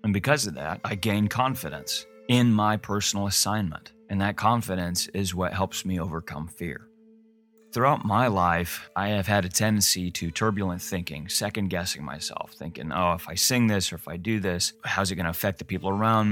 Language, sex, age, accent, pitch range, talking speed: English, male, 30-49, American, 90-105 Hz, 190 wpm